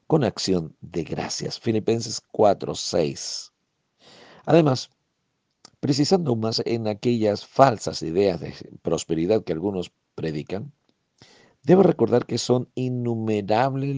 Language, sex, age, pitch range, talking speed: Spanish, male, 50-69, 95-135 Hz, 105 wpm